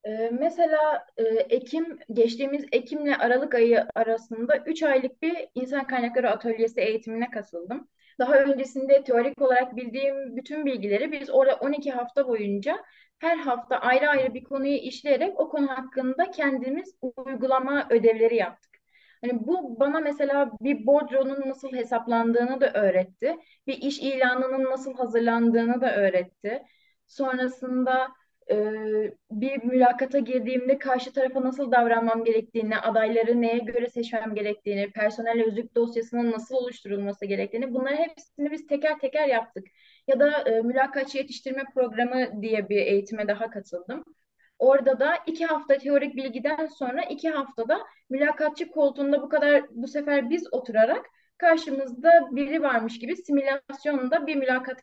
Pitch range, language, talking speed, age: 230-285 Hz, Turkish, 130 wpm, 30-49